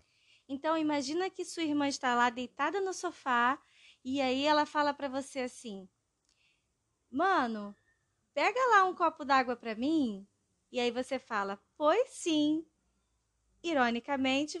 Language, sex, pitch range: Portuguese, female, 265-330 Hz